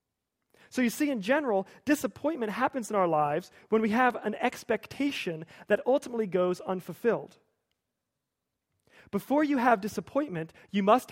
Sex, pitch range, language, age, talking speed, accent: male, 185-245 Hz, English, 40-59, 135 wpm, American